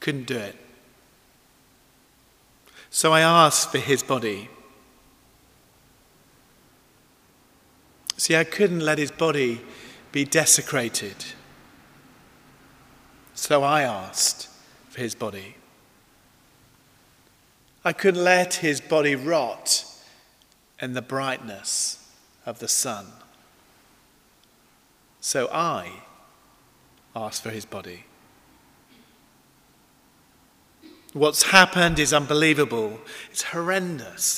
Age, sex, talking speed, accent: 40-59, male, 80 wpm, British